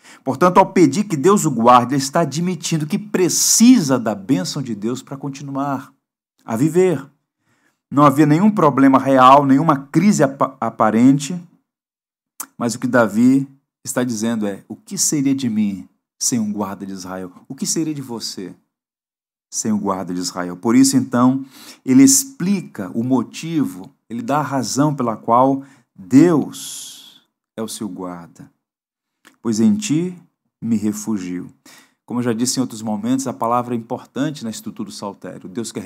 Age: 40-59